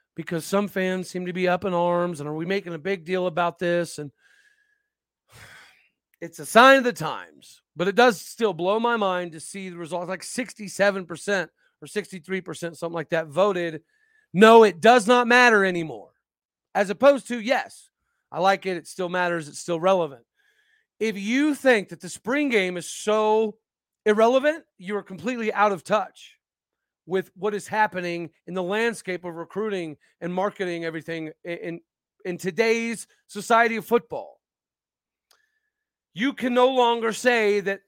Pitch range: 175-225 Hz